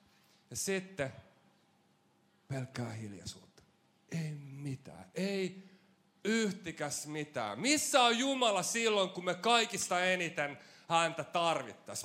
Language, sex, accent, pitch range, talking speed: Finnish, male, native, 135-190 Hz, 95 wpm